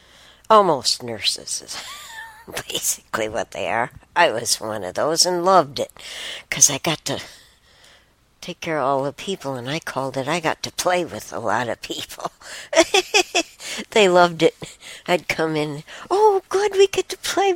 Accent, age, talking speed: American, 60-79, 170 wpm